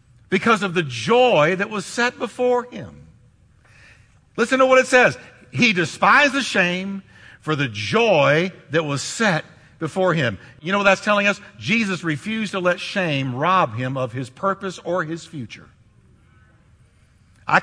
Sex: male